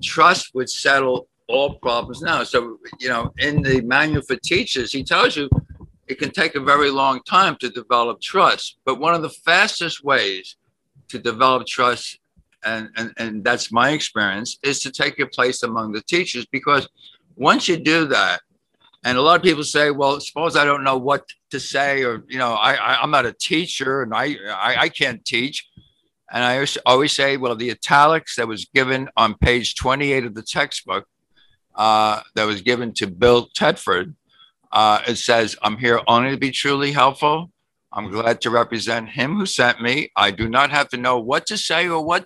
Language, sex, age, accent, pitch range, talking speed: English, male, 60-79, American, 120-150 Hz, 195 wpm